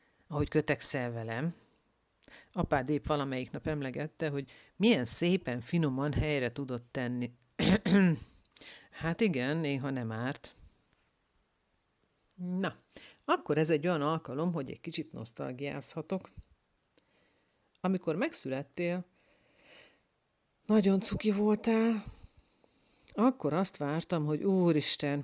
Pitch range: 130-175 Hz